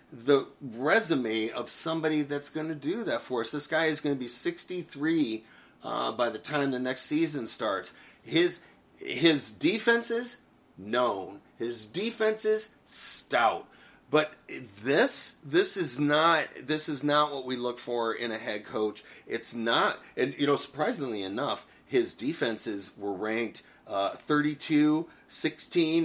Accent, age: American, 30-49